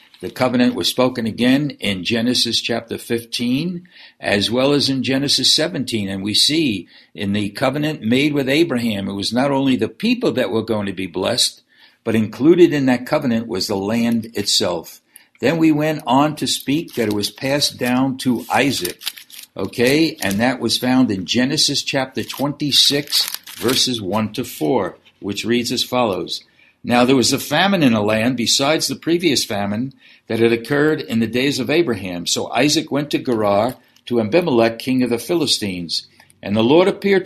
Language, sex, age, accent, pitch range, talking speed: English, male, 60-79, American, 115-145 Hz, 175 wpm